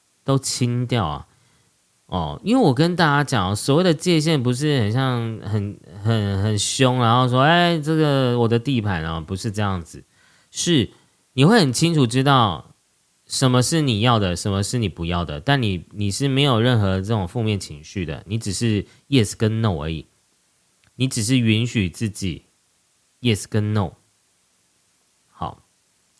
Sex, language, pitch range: male, Chinese, 100-140 Hz